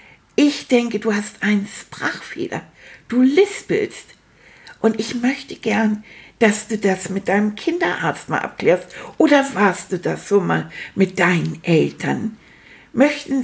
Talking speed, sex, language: 135 wpm, female, German